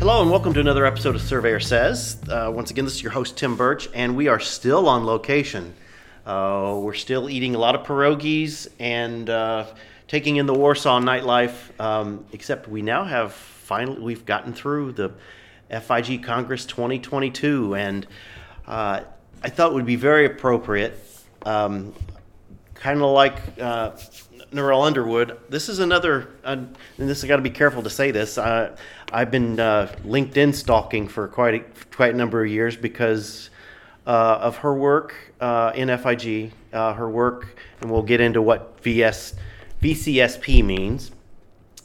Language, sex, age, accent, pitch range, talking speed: English, male, 40-59, American, 110-135 Hz, 160 wpm